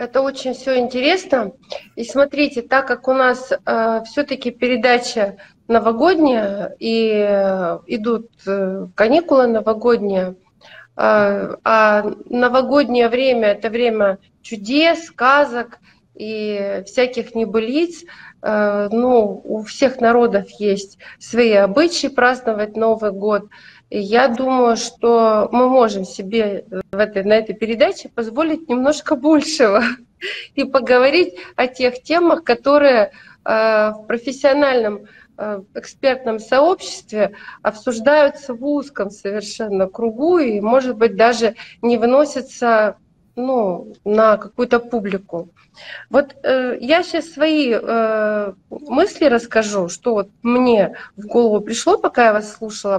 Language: Russian